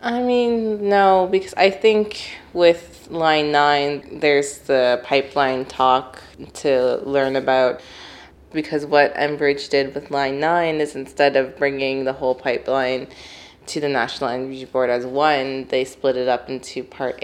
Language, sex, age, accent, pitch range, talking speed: English, female, 20-39, American, 130-155 Hz, 150 wpm